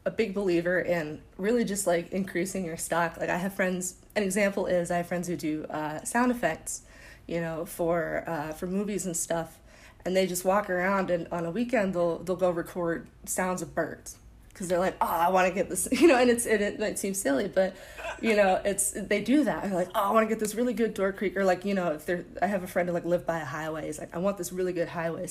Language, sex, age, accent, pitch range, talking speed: English, female, 20-39, American, 165-195 Hz, 260 wpm